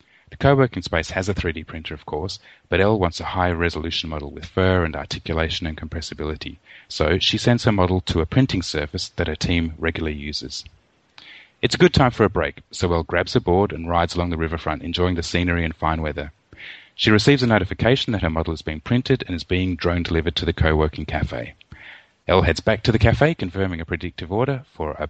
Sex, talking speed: male, 210 wpm